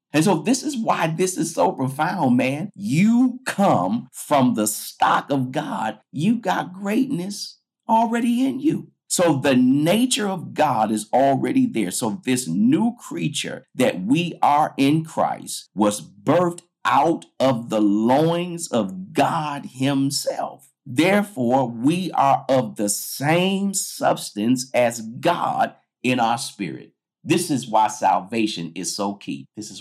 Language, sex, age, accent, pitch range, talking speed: English, male, 50-69, American, 125-200 Hz, 140 wpm